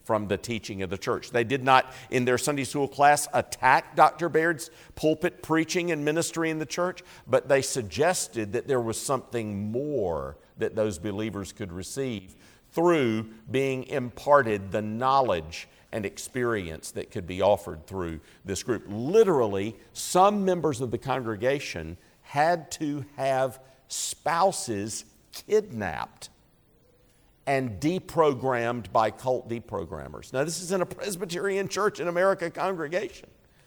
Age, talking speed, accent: 50-69, 135 wpm, American